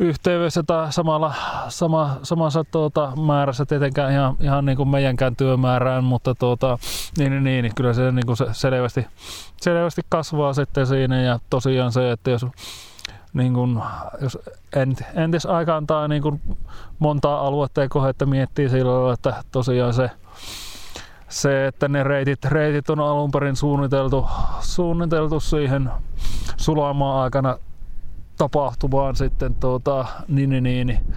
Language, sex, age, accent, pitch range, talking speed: Finnish, male, 20-39, native, 125-150 Hz, 135 wpm